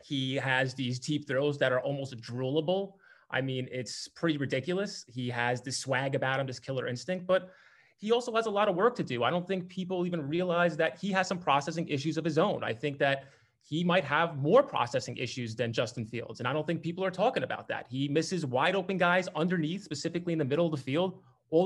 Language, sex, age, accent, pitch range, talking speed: English, male, 20-39, American, 135-185 Hz, 230 wpm